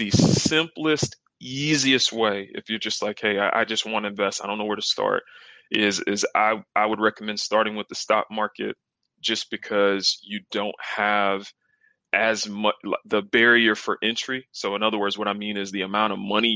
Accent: American